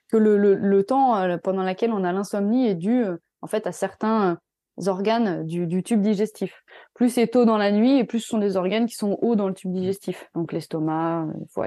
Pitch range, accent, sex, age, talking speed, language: 175-215 Hz, French, female, 20-39, 220 wpm, French